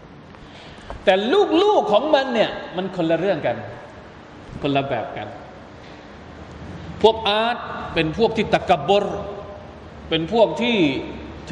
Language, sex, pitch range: Thai, male, 125-185 Hz